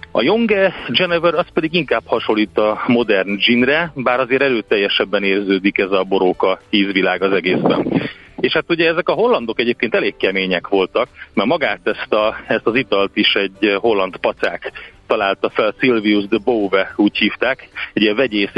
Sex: male